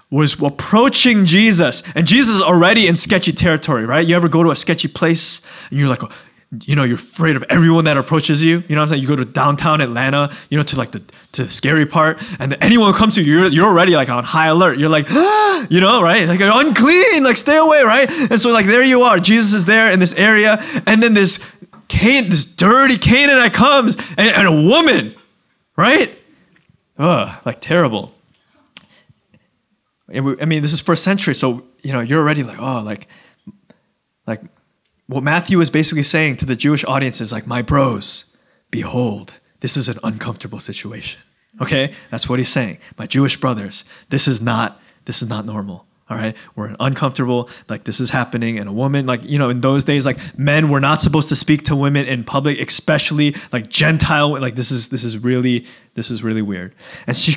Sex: male